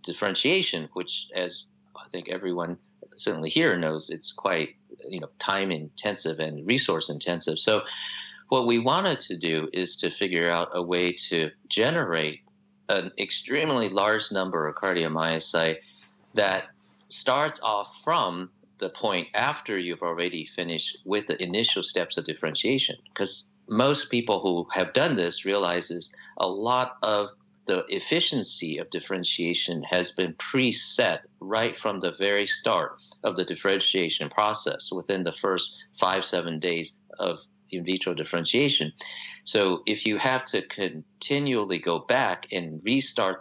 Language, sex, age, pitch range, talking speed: English, male, 40-59, 85-105 Hz, 140 wpm